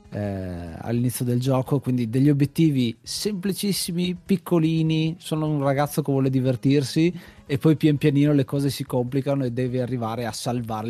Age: 30-49